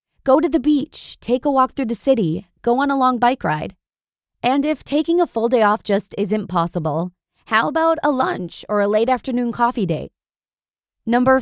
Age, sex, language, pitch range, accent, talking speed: 20-39, female, English, 190-265 Hz, American, 195 wpm